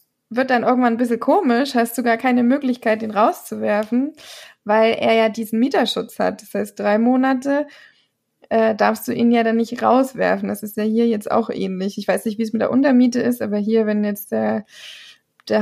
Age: 20-39